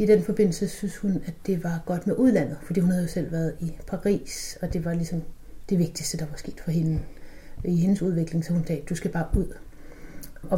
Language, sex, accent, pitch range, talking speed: Danish, female, native, 165-200 Hz, 235 wpm